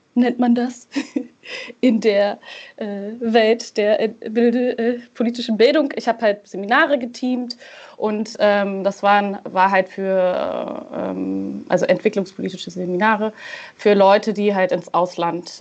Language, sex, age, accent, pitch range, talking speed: German, female, 20-39, German, 185-230 Hz, 135 wpm